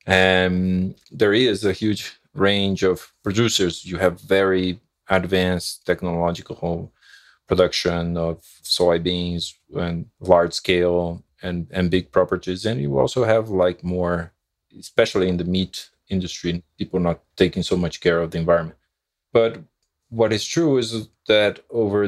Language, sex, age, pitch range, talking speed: English, male, 20-39, 90-105 Hz, 135 wpm